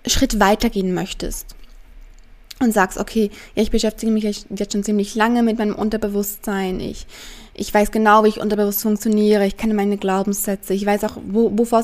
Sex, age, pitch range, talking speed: female, 20-39, 195-220 Hz, 170 wpm